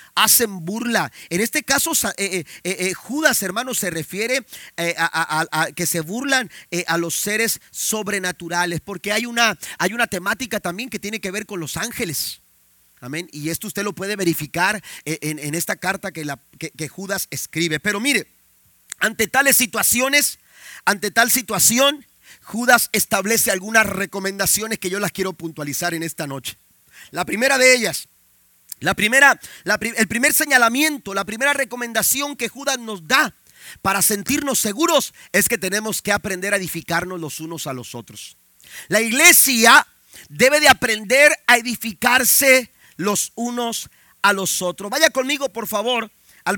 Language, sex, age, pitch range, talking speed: Spanish, male, 40-59, 180-250 Hz, 160 wpm